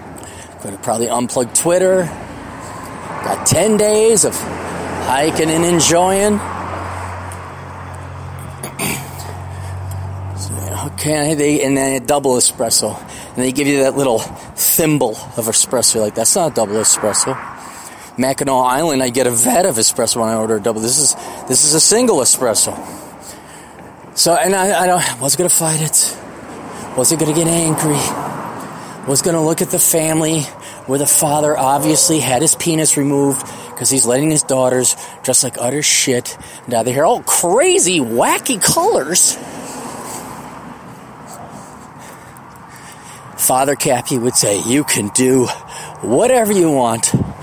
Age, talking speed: 30-49, 135 wpm